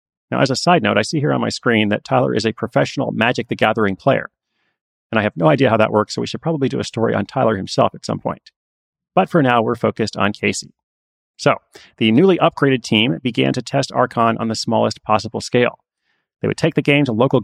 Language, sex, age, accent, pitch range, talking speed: English, male, 30-49, American, 110-150 Hz, 235 wpm